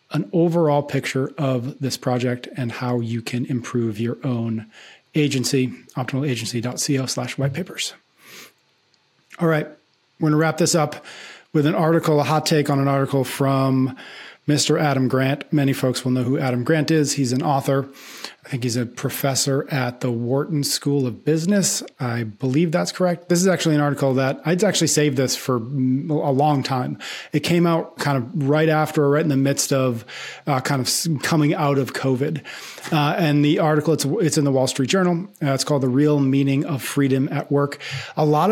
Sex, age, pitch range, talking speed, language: male, 40-59, 130-155 Hz, 185 wpm, English